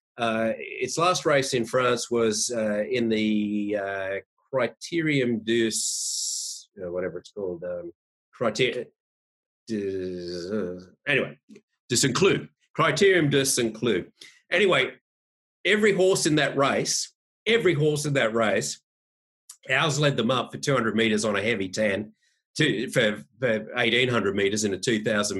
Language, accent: English, Australian